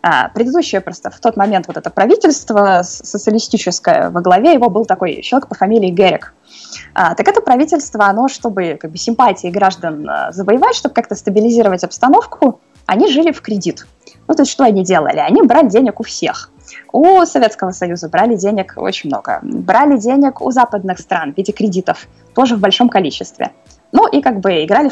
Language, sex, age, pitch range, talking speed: Russian, female, 20-39, 195-260 Hz, 165 wpm